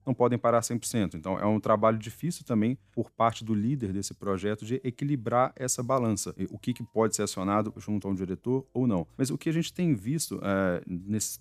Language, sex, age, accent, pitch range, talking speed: Portuguese, male, 40-59, Brazilian, 100-130 Hz, 205 wpm